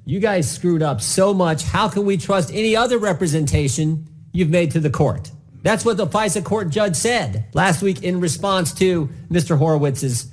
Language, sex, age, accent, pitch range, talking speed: English, male, 50-69, American, 125-170 Hz, 185 wpm